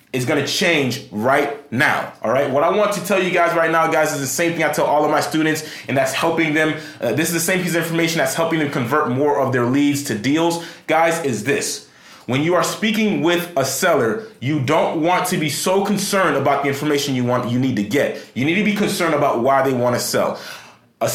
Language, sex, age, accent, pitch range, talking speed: English, male, 30-49, American, 140-185 Hz, 250 wpm